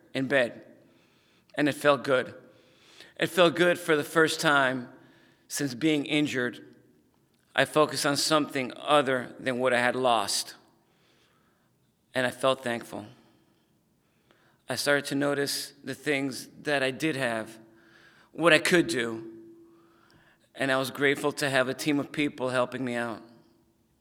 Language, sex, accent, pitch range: English, male, American, 120-145 Hz